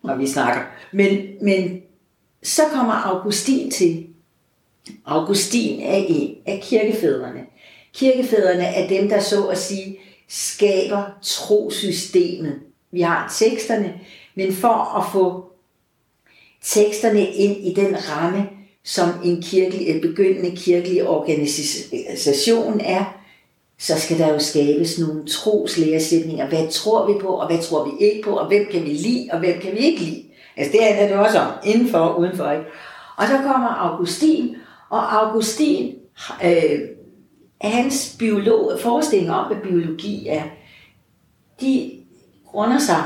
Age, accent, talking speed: 60-79, native, 130 wpm